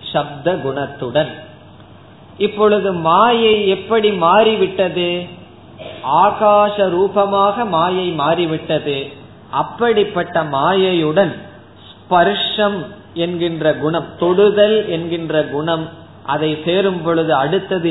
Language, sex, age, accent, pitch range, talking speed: Tamil, male, 20-39, native, 145-185 Hz, 75 wpm